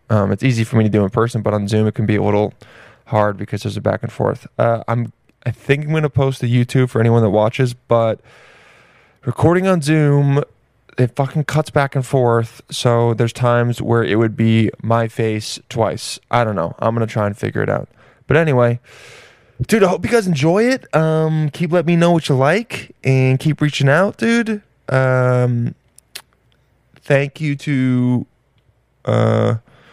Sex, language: male, English